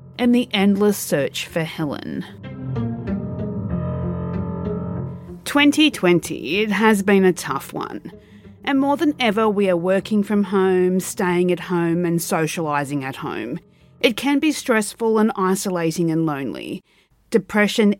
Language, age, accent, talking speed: English, 40-59, Australian, 125 wpm